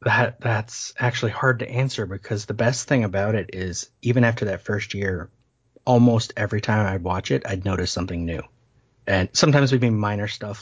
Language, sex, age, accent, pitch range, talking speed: English, male, 30-49, American, 100-125 Hz, 190 wpm